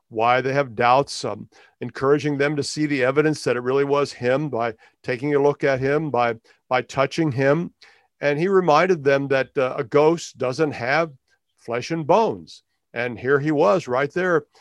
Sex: male